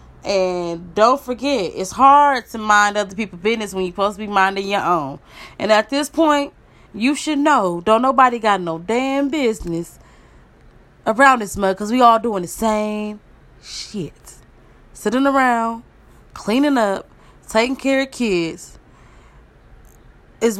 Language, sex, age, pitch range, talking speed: English, female, 20-39, 180-245 Hz, 145 wpm